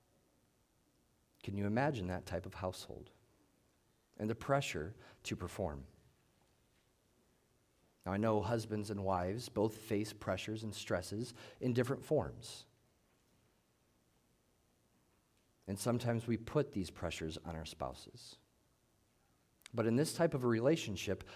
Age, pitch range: 40-59, 95-130 Hz